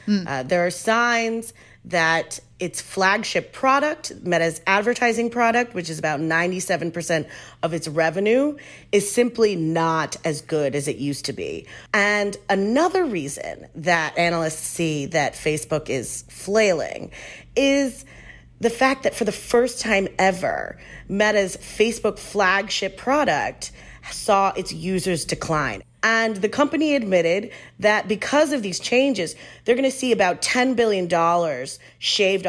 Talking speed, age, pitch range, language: 135 wpm, 30-49, 165-240 Hz, English